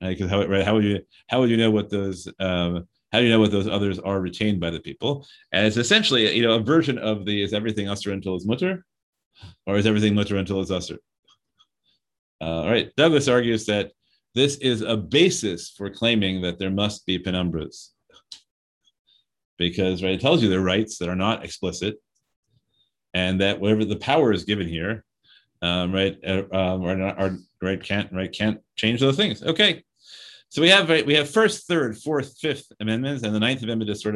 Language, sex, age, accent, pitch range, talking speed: English, male, 30-49, American, 95-115 Hz, 200 wpm